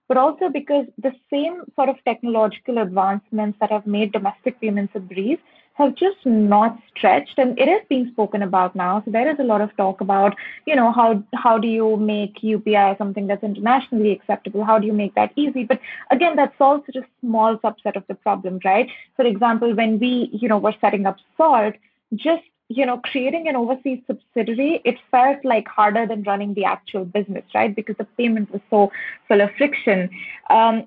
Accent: Indian